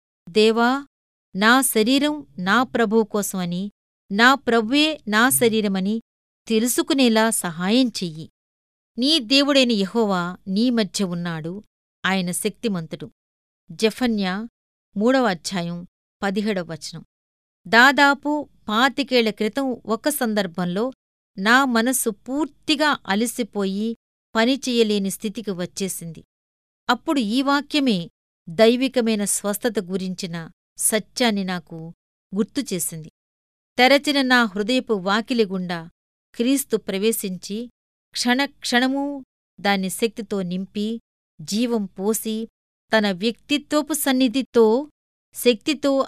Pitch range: 190-255 Hz